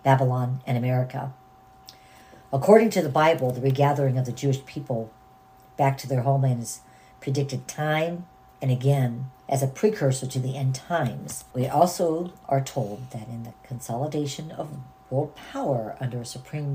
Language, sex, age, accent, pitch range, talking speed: English, female, 50-69, American, 125-150 Hz, 155 wpm